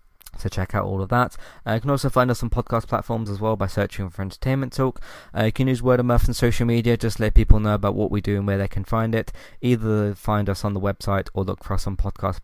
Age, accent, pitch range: 20-39, British, 100-120 Hz